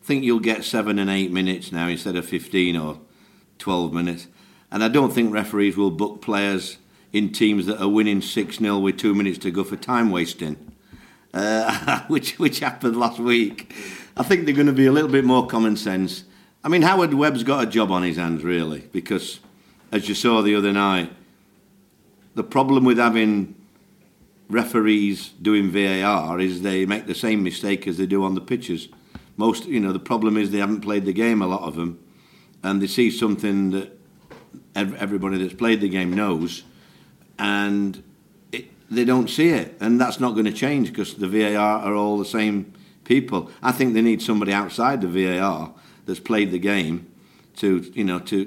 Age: 50-69